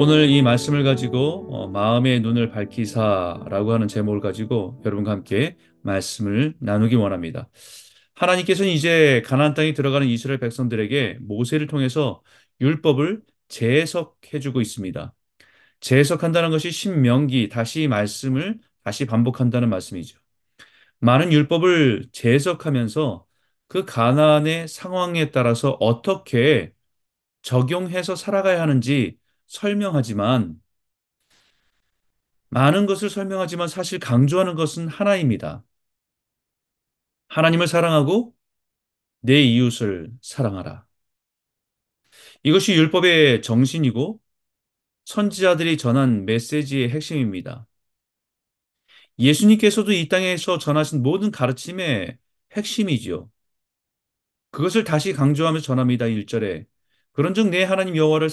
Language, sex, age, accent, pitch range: Korean, male, 30-49, native, 115-165 Hz